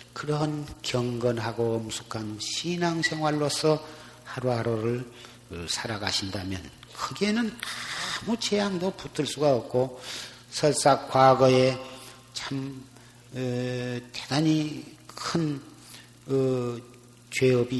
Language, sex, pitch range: Korean, male, 120-150 Hz